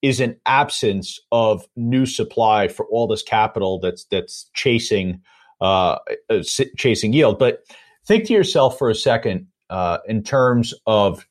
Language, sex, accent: English, male, American